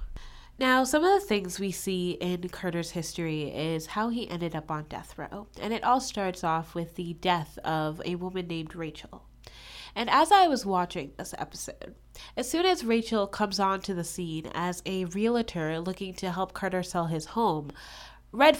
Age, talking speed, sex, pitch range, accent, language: 10-29, 185 wpm, female, 175-260 Hz, American, English